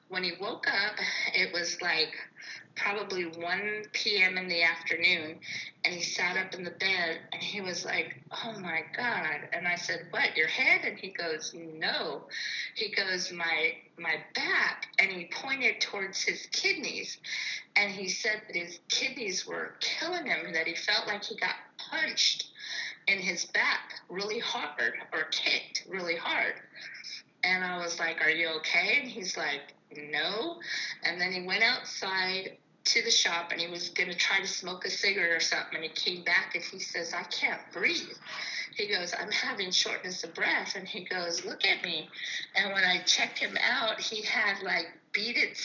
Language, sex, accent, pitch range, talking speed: English, female, American, 175-225 Hz, 180 wpm